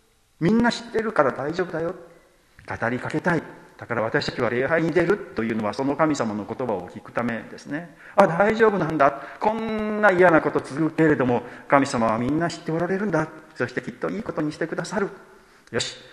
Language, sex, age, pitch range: Japanese, male, 40-59, 125-175 Hz